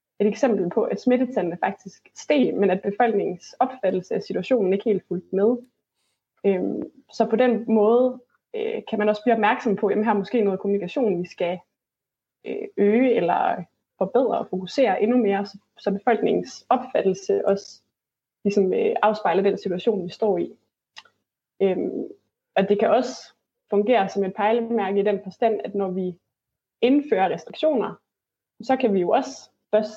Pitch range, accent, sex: 195-235 Hz, native, female